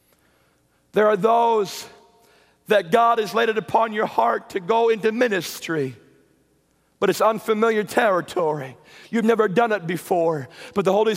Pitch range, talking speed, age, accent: 190-255 Hz, 145 wpm, 50-69, American